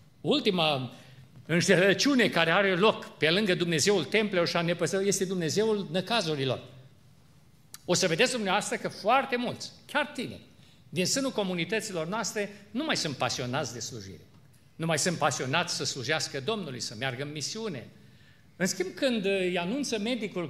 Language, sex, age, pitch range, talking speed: Romanian, male, 50-69, 150-220 Hz, 145 wpm